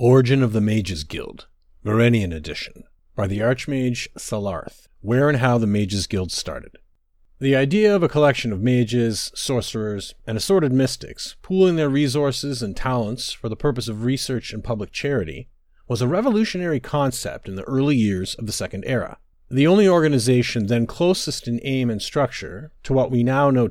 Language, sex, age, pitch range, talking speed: English, male, 40-59, 110-145 Hz, 170 wpm